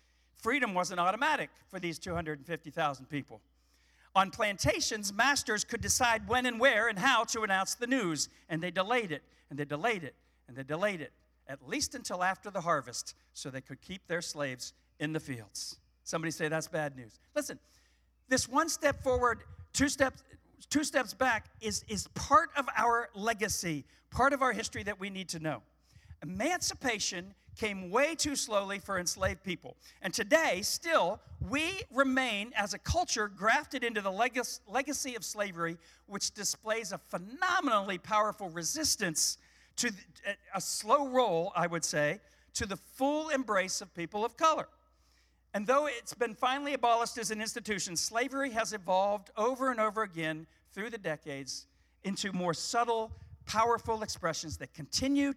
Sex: male